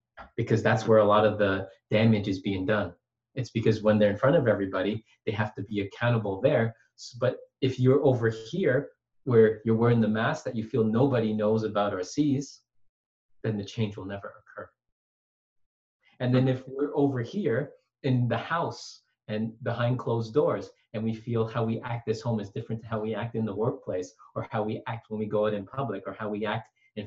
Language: English